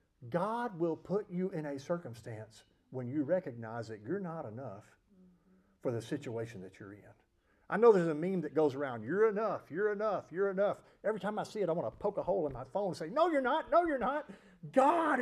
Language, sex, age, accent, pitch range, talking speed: English, male, 50-69, American, 135-225 Hz, 225 wpm